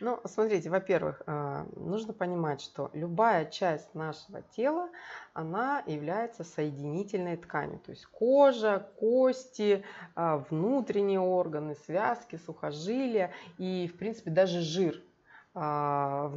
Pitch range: 155-210 Hz